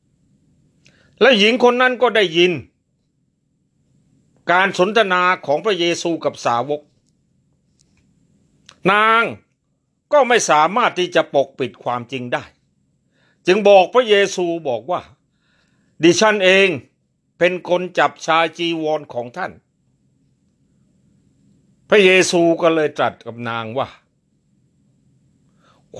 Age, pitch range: 60-79, 135-180 Hz